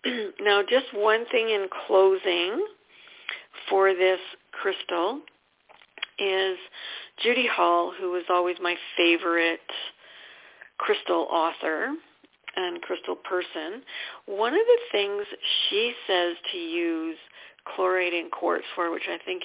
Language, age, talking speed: English, 50-69, 115 wpm